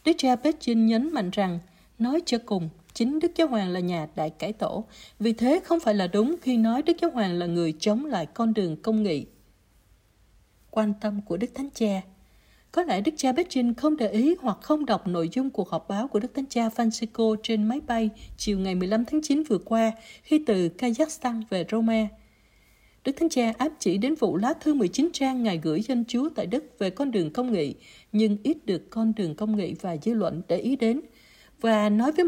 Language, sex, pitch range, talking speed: Vietnamese, female, 195-275 Hz, 215 wpm